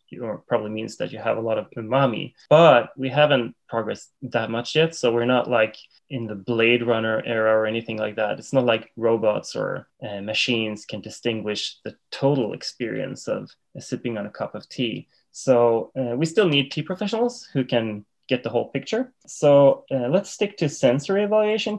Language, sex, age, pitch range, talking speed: English, male, 20-39, 115-165 Hz, 190 wpm